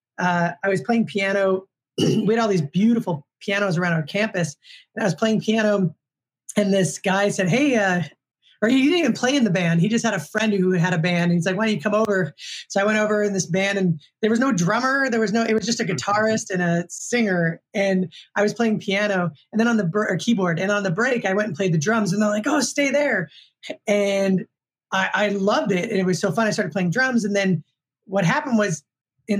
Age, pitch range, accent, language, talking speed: 20-39, 180-215 Hz, American, English, 245 wpm